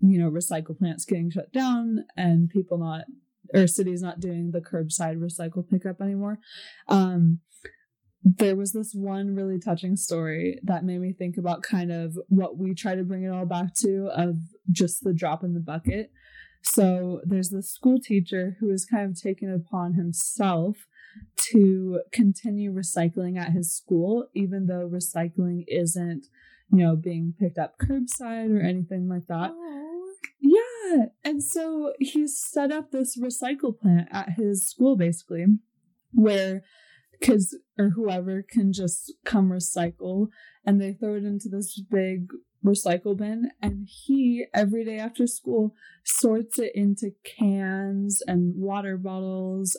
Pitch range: 180-220 Hz